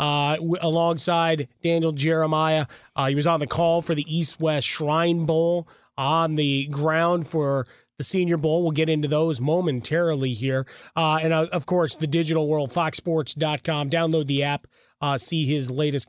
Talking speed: 165 wpm